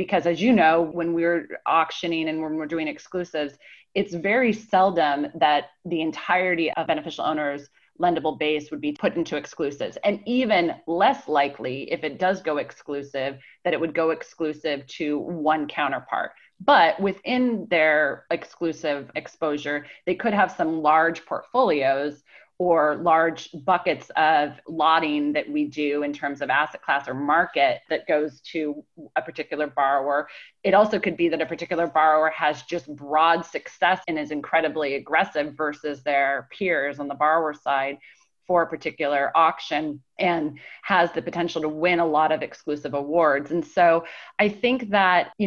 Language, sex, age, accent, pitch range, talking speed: English, female, 30-49, American, 150-175 Hz, 160 wpm